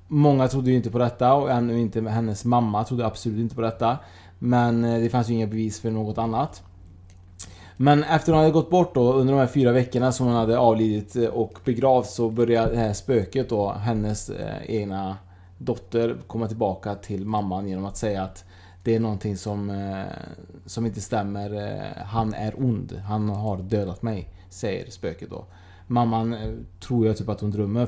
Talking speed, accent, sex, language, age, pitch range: 185 wpm, Norwegian, male, Swedish, 20-39, 100-120 Hz